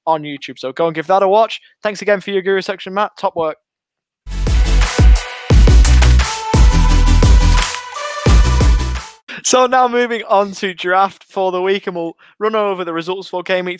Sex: male